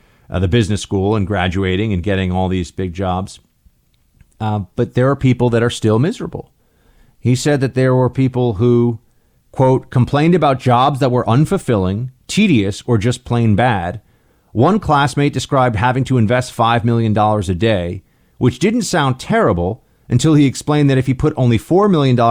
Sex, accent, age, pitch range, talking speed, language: male, American, 40-59, 105-130 Hz, 170 wpm, English